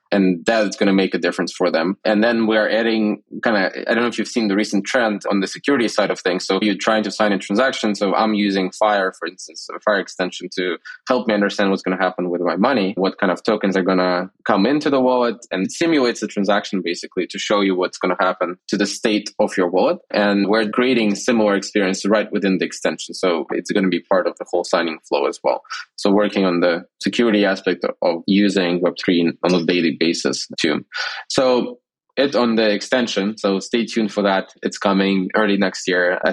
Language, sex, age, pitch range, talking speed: English, male, 20-39, 95-115 Hz, 230 wpm